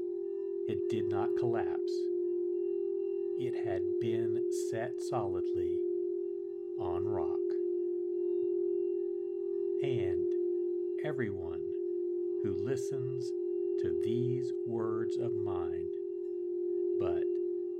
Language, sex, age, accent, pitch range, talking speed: English, male, 60-79, American, 360-385 Hz, 70 wpm